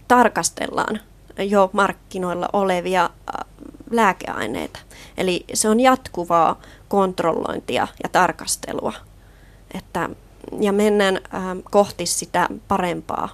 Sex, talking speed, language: female, 80 wpm, Finnish